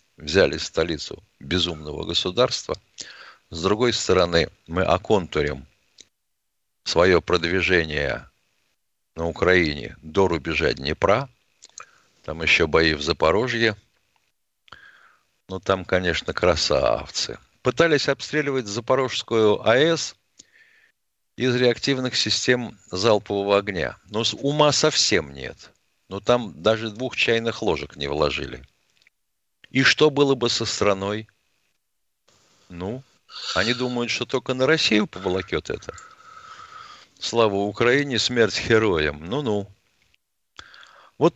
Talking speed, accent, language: 100 wpm, native, Russian